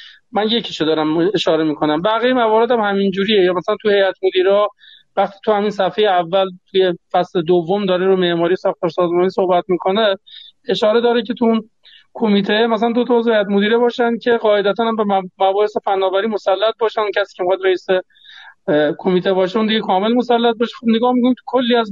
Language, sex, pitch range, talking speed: Persian, male, 180-220 Hz, 180 wpm